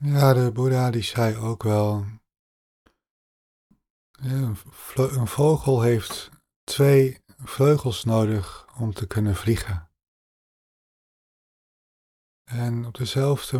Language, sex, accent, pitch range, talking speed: Dutch, male, Dutch, 95-120 Hz, 90 wpm